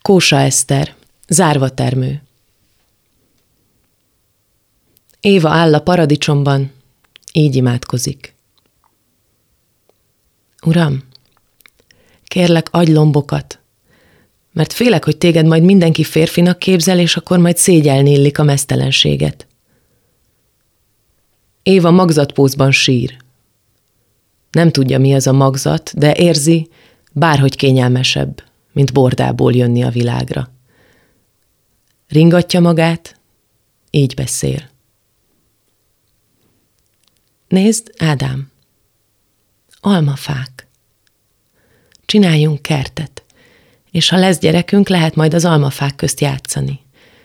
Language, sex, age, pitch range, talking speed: Hungarian, female, 30-49, 110-160 Hz, 80 wpm